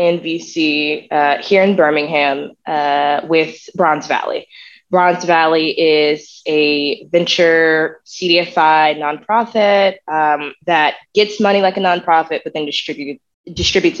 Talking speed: 110 wpm